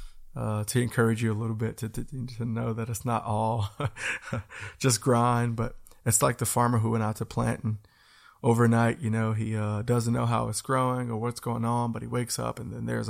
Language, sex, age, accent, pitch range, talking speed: English, male, 20-39, American, 110-125 Hz, 225 wpm